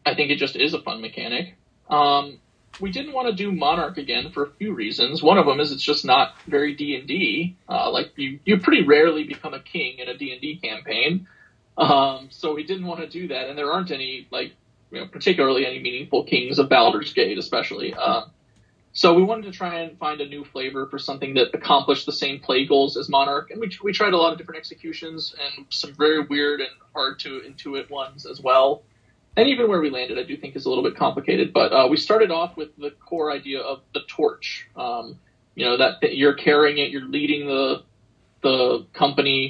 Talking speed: 215 wpm